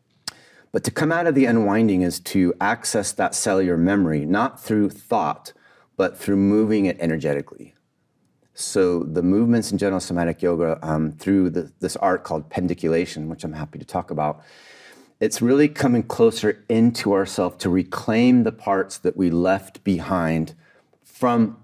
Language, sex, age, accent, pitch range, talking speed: English, male, 30-49, American, 85-110 Hz, 155 wpm